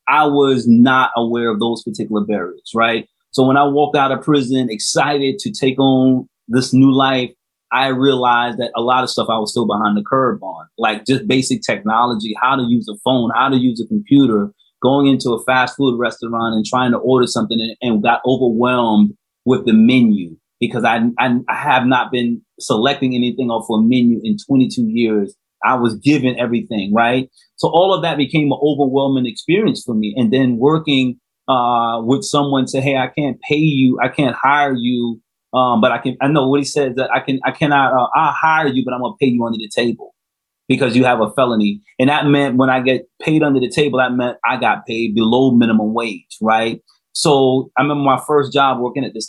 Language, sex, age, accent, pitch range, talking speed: English, male, 30-49, American, 115-135 Hz, 210 wpm